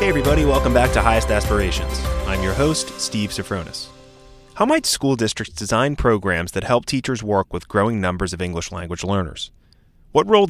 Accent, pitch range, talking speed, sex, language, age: American, 95-125 Hz, 175 wpm, male, English, 30-49